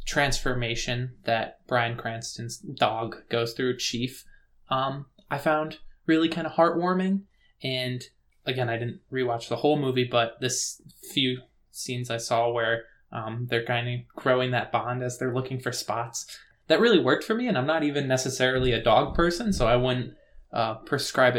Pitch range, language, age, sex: 120-135 Hz, English, 20-39, male